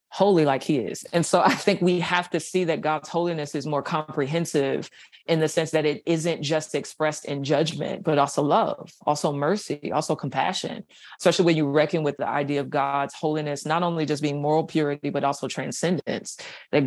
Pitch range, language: 145-175 Hz, English